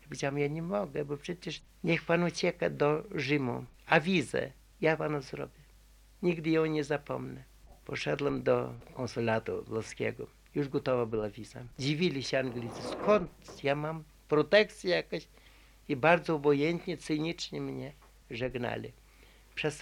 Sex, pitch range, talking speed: male, 130-165 Hz, 130 wpm